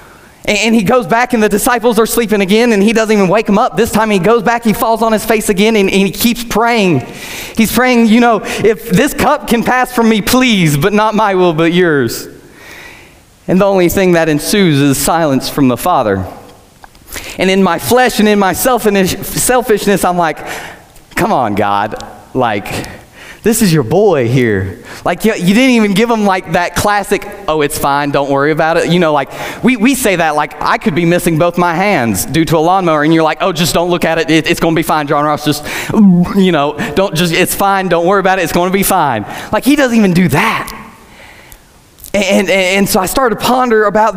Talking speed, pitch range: 220 wpm, 180-235 Hz